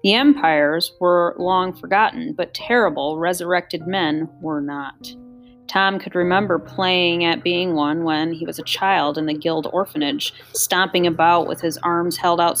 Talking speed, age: 160 wpm, 30-49